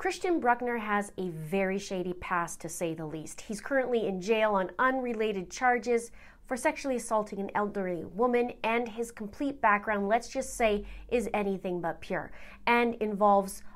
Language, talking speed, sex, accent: English, 160 wpm, female, American